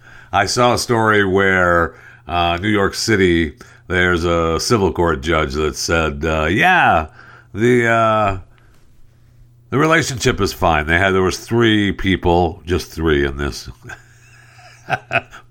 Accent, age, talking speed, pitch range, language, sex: American, 60-79, 130 wpm, 75-105 Hz, English, male